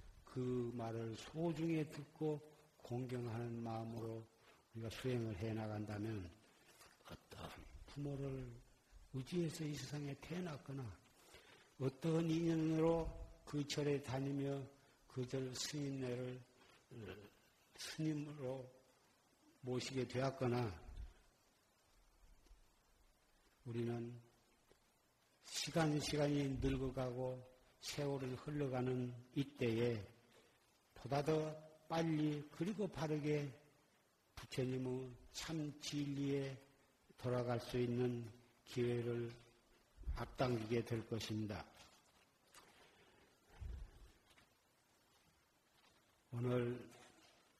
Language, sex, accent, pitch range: Korean, male, native, 120-140 Hz